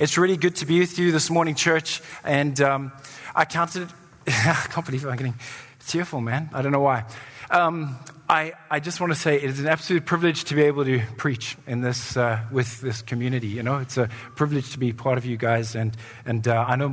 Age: 20-39